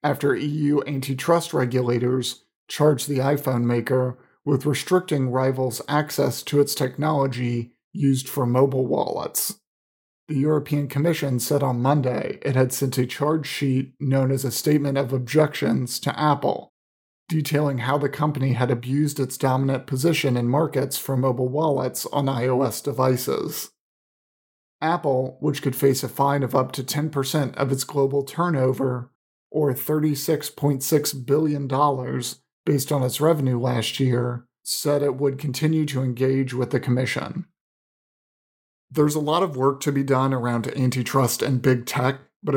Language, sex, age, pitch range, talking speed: English, male, 40-59, 130-145 Hz, 145 wpm